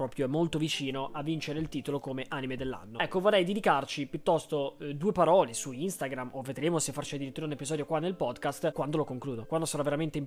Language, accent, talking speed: Italian, native, 215 wpm